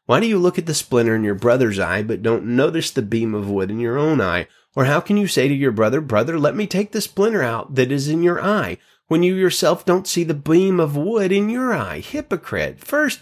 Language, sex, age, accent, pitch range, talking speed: English, male, 30-49, American, 115-155 Hz, 255 wpm